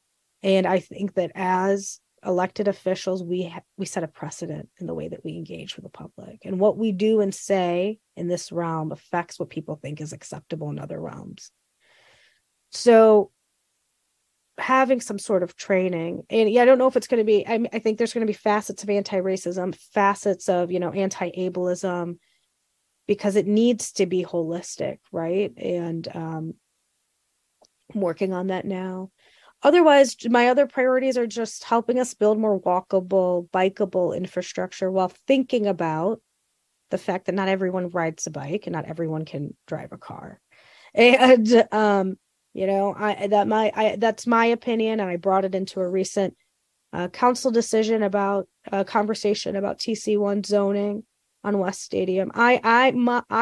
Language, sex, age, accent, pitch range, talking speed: English, female, 30-49, American, 185-220 Hz, 170 wpm